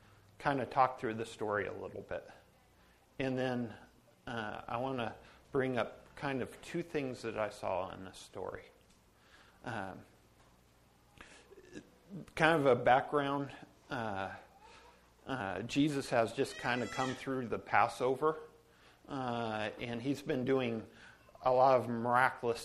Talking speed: 140 wpm